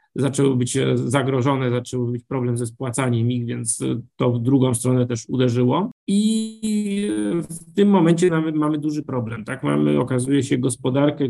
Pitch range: 125-145 Hz